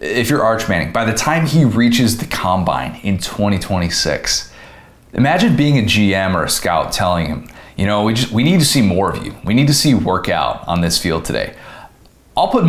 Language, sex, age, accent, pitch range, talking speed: English, male, 30-49, American, 95-145 Hz, 215 wpm